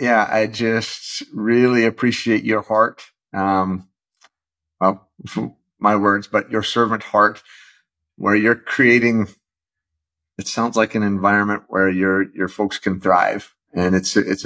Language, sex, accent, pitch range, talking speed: English, male, American, 95-115 Hz, 135 wpm